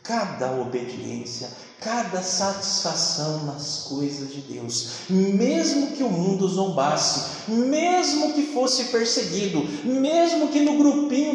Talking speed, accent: 110 wpm, Brazilian